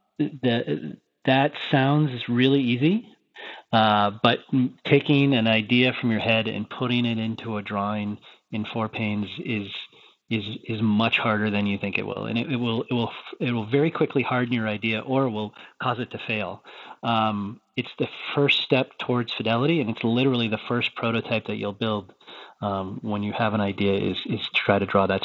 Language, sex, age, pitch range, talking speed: English, male, 30-49, 105-120 Hz, 190 wpm